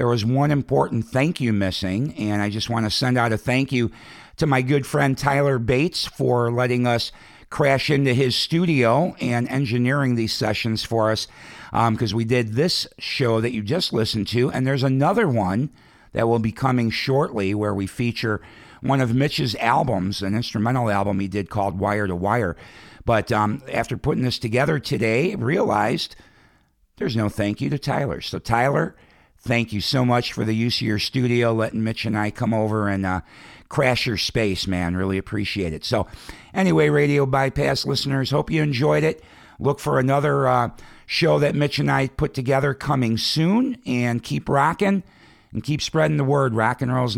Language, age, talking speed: English, 50-69, 185 wpm